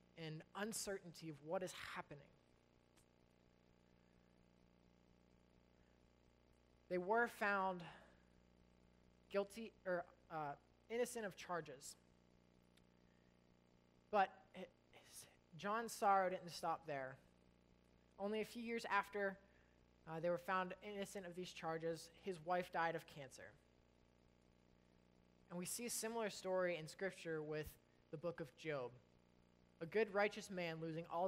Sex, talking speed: male, 110 wpm